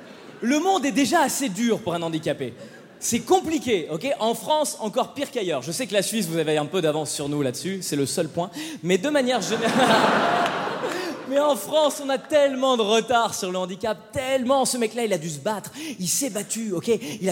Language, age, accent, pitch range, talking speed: French, 20-39, French, 185-270 Hz, 215 wpm